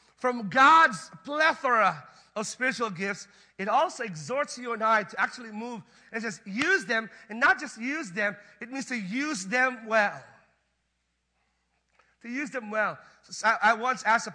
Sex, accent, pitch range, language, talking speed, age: male, American, 185-240 Hz, English, 160 wpm, 40-59